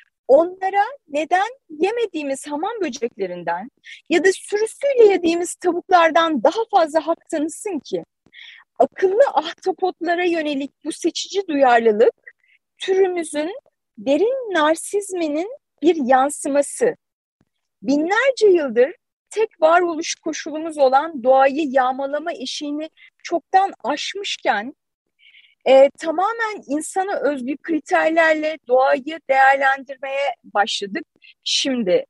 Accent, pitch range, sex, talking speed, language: native, 270-365 Hz, female, 85 wpm, Turkish